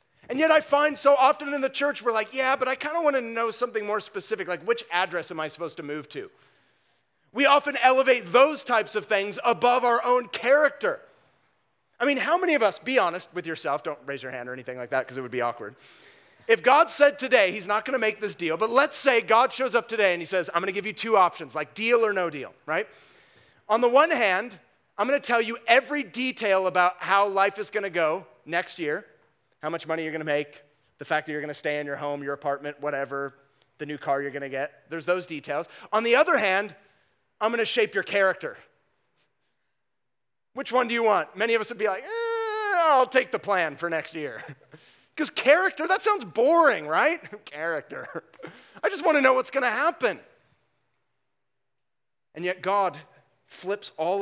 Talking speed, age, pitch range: 220 wpm, 30-49, 160-260 Hz